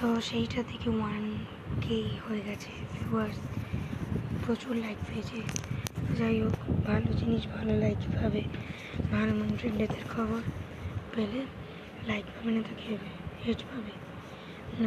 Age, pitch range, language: 20-39, 195-235 Hz, Bengali